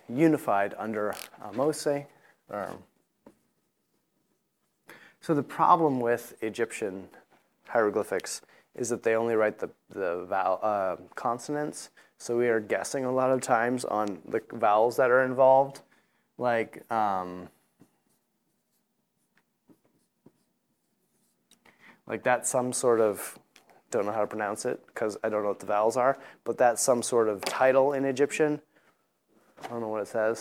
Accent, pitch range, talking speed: American, 110-140 Hz, 140 wpm